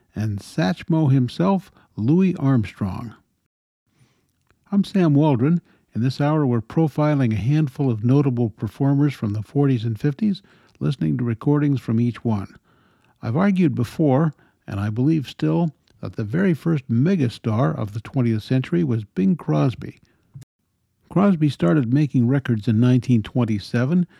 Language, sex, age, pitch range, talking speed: English, male, 60-79, 120-160 Hz, 135 wpm